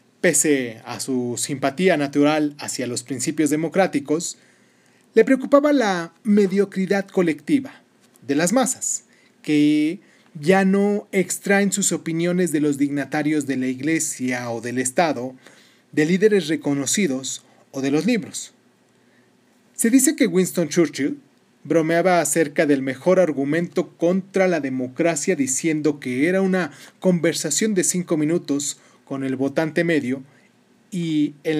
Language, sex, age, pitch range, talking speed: Spanish, male, 30-49, 140-190 Hz, 125 wpm